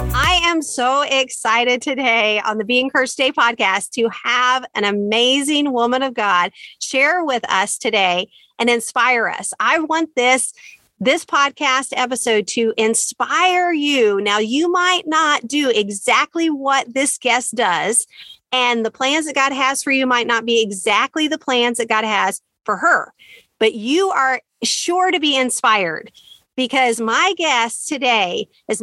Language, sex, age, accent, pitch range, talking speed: English, female, 40-59, American, 230-315 Hz, 155 wpm